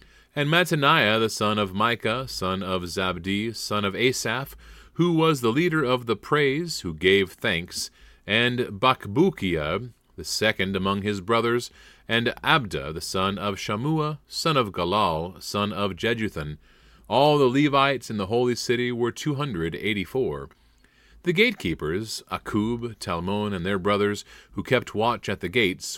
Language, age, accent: English, 30-49, American